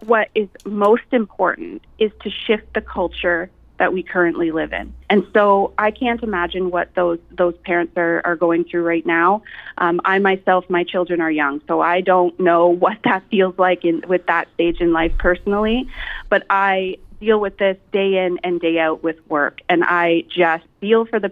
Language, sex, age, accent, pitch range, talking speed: English, female, 30-49, American, 175-215 Hz, 195 wpm